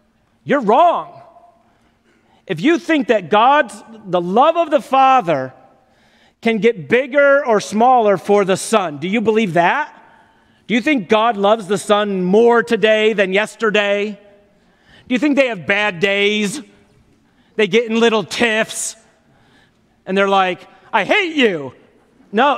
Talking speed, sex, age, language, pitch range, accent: 145 wpm, male, 40-59, English, 195-270 Hz, American